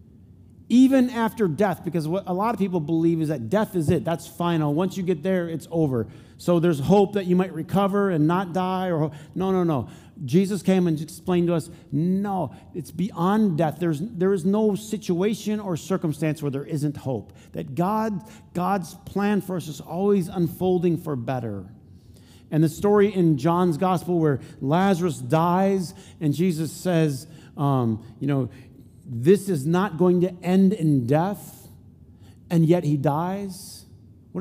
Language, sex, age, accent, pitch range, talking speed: English, male, 50-69, American, 125-185 Hz, 170 wpm